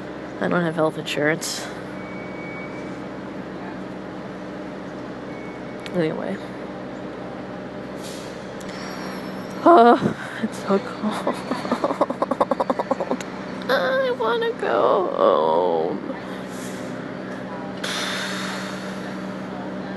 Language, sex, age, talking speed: English, female, 20-39, 45 wpm